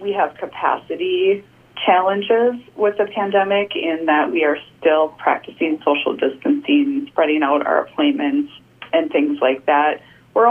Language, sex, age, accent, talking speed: English, female, 30-49, American, 135 wpm